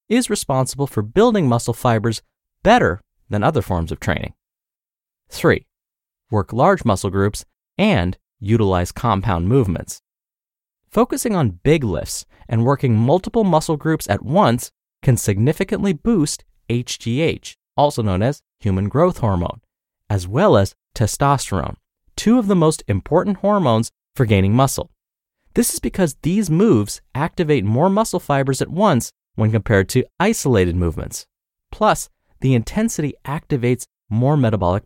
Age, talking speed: 30-49, 135 wpm